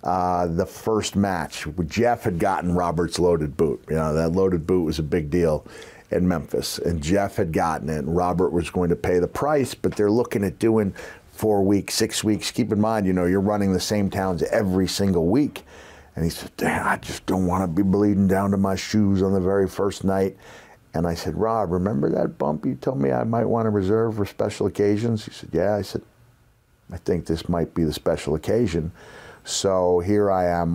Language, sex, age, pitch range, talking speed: English, male, 50-69, 85-105 Hz, 215 wpm